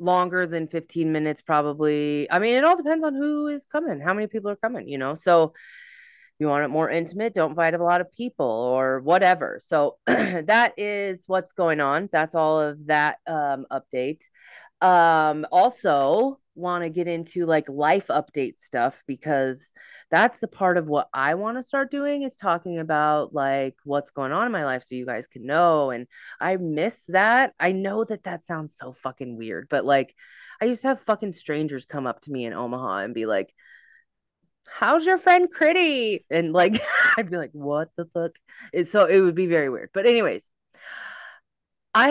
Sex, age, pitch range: female, 20-39, 145-215 Hz